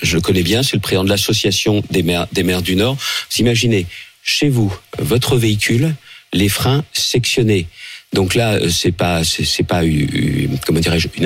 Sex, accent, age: male, French, 50-69